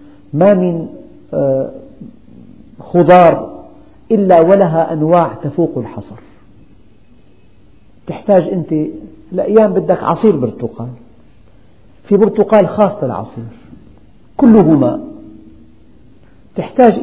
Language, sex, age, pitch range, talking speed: Arabic, male, 50-69, 130-185 Hz, 80 wpm